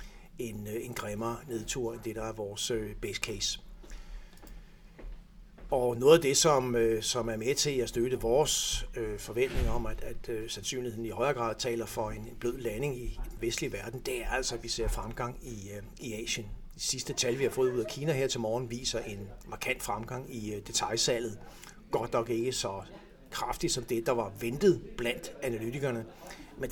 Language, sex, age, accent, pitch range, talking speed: Danish, male, 60-79, native, 110-125 Hz, 185 wpm